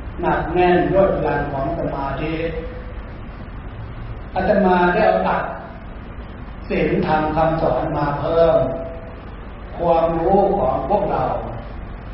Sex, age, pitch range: male, 60-79, 135-175 Hz